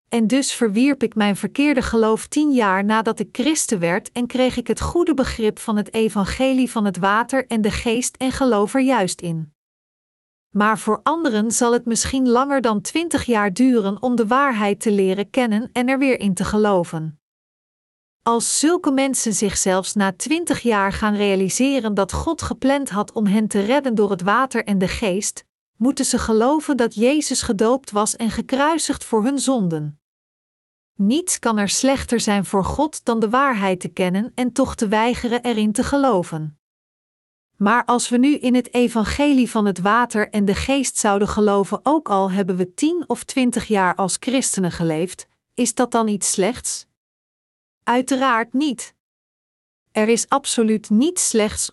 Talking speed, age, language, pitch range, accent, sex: 170 wpm, 40-59, Dutch, 205-260 Hz, Dutch, female